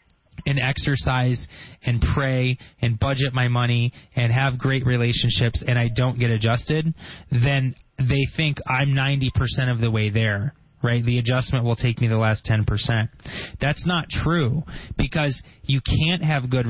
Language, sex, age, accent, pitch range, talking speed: English, male, 20-39, American, 115-140 Hz, 155 wpm